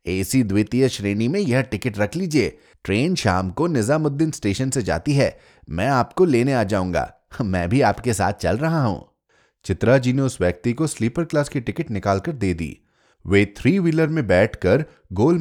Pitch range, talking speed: 95-150 Hz, 170 wpm